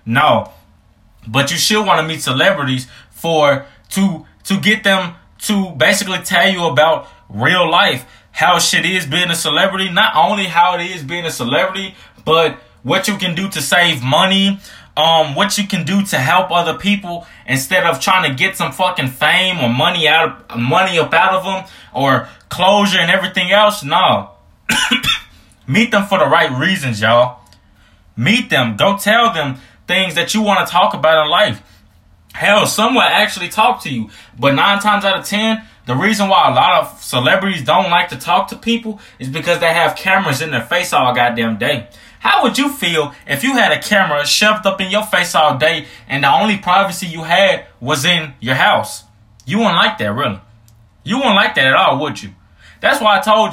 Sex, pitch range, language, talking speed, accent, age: male, 140-200 Hz, English, 195 wpm, American, 20-39